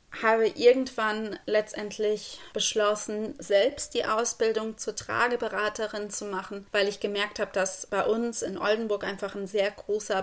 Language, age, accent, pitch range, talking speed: German, 20-39, German, 190-215 Hz, 140 wpm